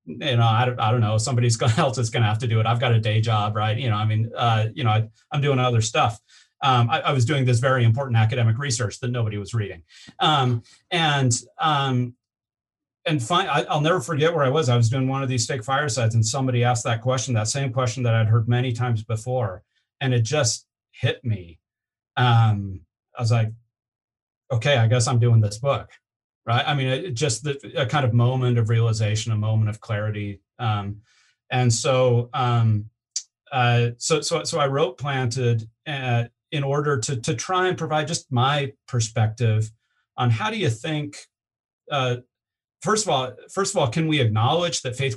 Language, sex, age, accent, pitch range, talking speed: English, male, 40-59, American, 115-135 Hz, 205 wpm